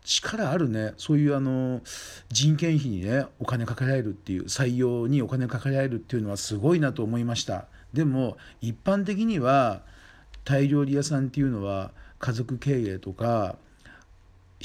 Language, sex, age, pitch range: Japanese, male, 40-59, 95-135 Hz